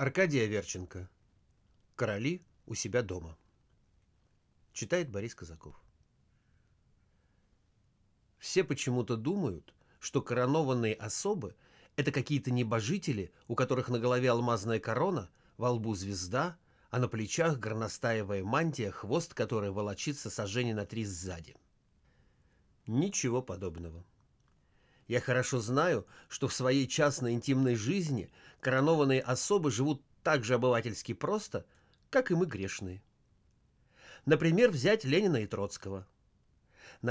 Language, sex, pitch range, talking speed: Russian, male, 105-145 Hz, 110 wpm